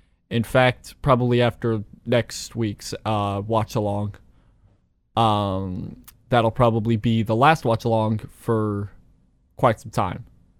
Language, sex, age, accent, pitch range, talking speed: English, male, 20-39, American, 110-130 Hz, 110 wpm